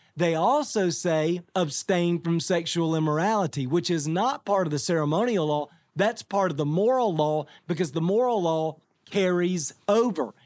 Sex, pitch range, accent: male, 165-210 Hz, American